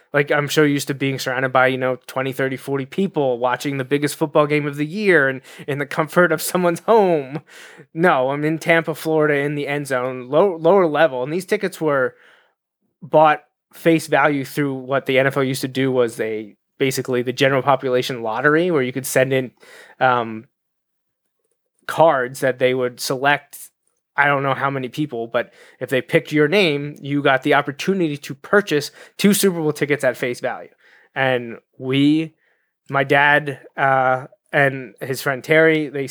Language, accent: English, American